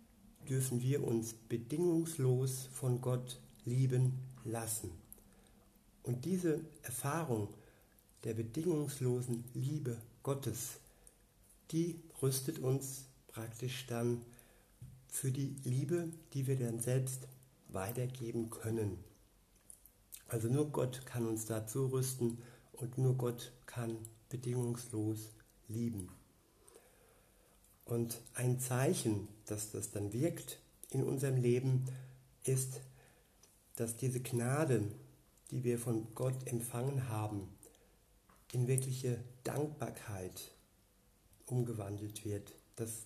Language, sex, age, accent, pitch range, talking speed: German, male, 60-79, German, 110-130 Hz, 95 wpm